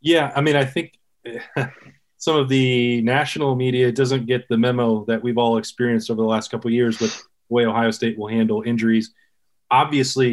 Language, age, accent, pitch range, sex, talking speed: English, 20-39, American, 115-130 Hz, male, 190 wpm